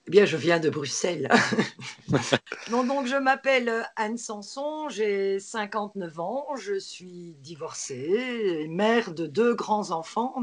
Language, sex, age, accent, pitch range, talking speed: French, female, 50-69, French, 195-245 Hz, 130 wpm